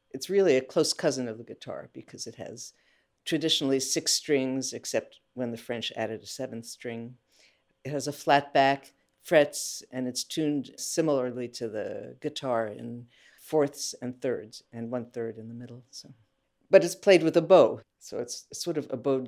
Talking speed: 180 wpm